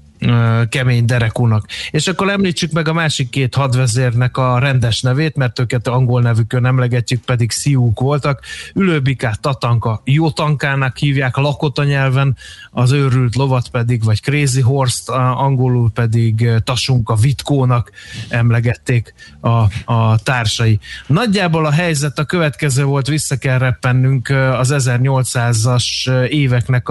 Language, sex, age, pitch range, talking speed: Hungarian, male, 20-39, 120-145 Hz, 125 wpm